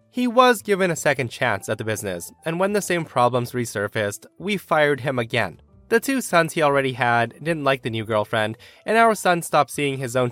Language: English